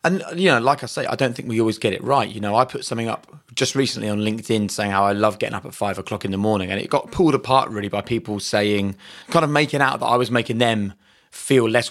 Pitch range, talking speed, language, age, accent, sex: 105-130 Hz, 280 wpm, English, 20-39, British, male